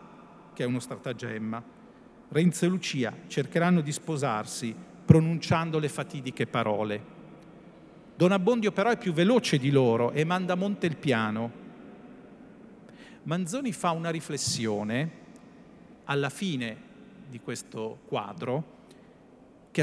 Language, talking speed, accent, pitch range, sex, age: Italian, 115 wpm, native, 125-210 Hz, male, 50-69